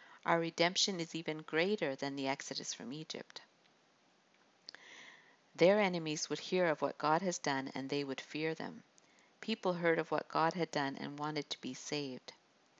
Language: English